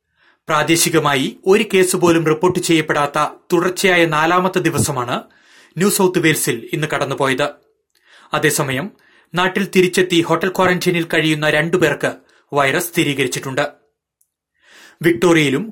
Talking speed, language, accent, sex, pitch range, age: 90 wpm, Malayalam, native, male, 155-185 Hz, 30-49